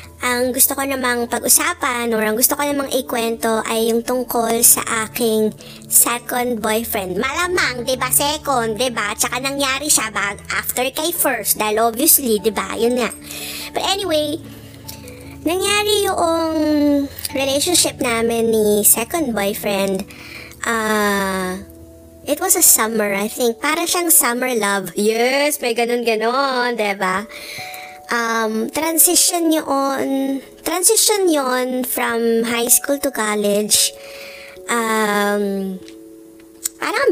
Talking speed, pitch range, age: 120 wpm, 210-280 Hz, 20-39